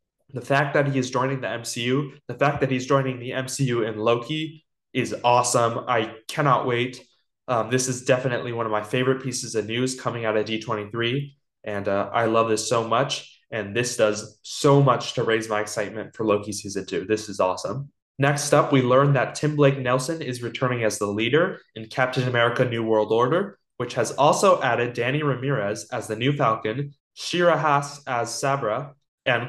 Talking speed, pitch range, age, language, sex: 190 wpm, 110-140 Hz, 20-39, English, male